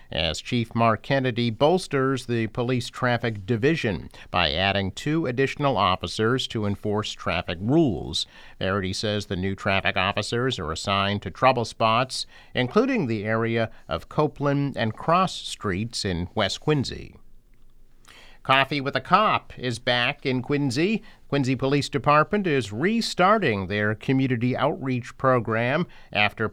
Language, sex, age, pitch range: English, male, 50-69, 110-135 Hz